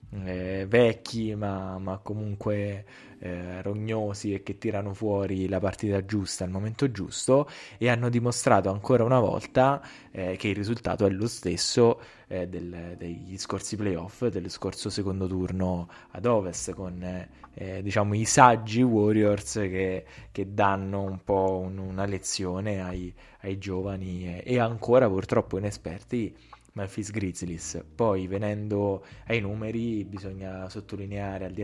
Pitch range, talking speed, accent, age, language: 95-110 Hz, 140 wpm, native, 20-39, Italian